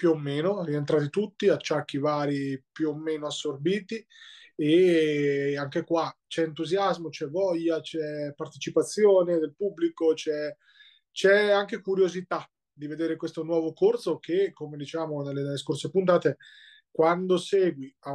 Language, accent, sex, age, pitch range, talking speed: Italian, native, male, 20-39, 155-190 Hz, 135 wpm